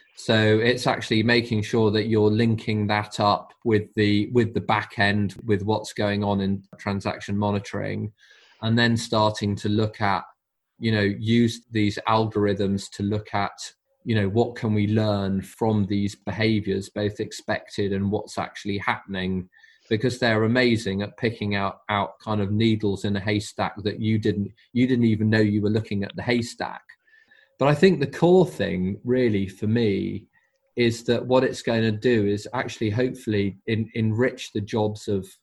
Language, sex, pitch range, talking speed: English, male, 100-120 Hz, 175 wpm